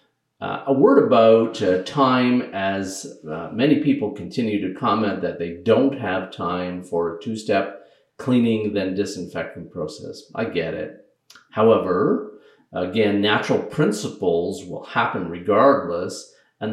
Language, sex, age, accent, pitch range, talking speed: English, male, 50-69, American, 95-135 Hz, 130 wpm